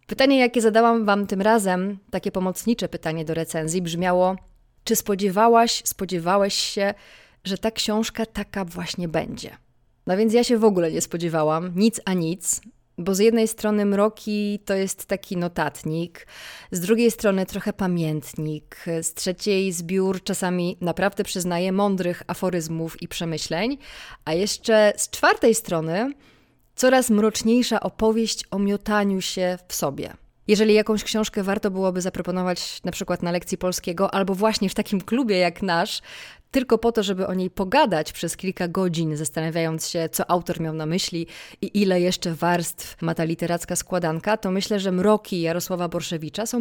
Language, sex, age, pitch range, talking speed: Polish, female, 20-39, 175-215 Hz, 155 wpm